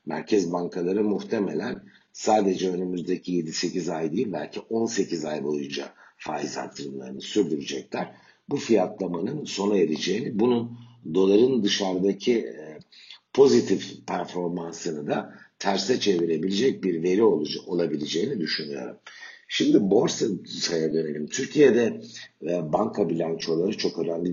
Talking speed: 95 wpm